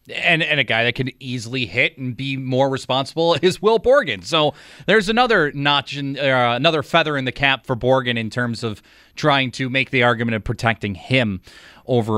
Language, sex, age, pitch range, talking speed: English, male, 30-49, 120-165 Hz, 195 wpm